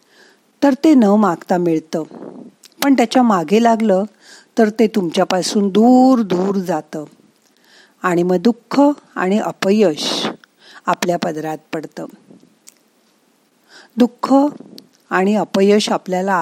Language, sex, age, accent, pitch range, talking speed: Marathi, female, 40-59, native, 185-250 Hz, 100 wpm